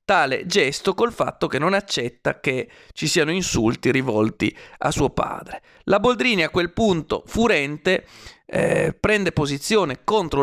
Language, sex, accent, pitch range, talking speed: Italian, male, native, 140-200 Hz, 145 wpm